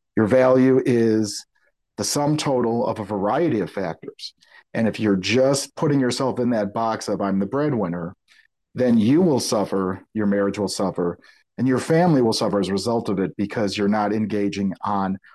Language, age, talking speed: English, 40-59, 185 wpm